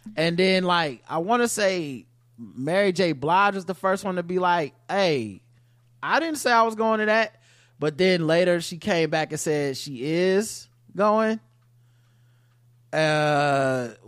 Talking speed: 160 wpm